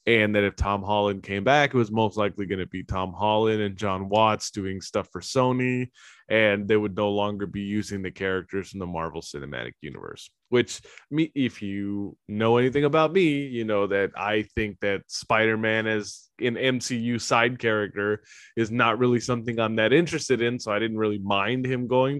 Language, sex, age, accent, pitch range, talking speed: English, male, 20-39, American, 100-125 Hz, 195 wpm